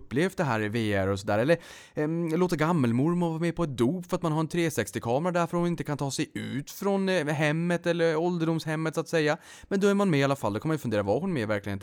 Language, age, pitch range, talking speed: Swedish, 20-39, 120-170 Hz, 270 wpm